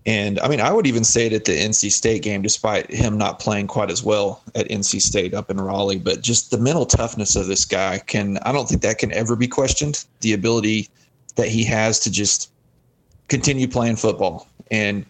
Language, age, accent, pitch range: English, 30-49, American, 105-125 Hz